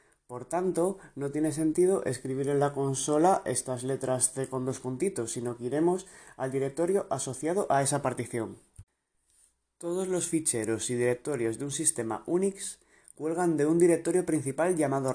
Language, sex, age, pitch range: Spanish, male, 20-39, 125-160 Hz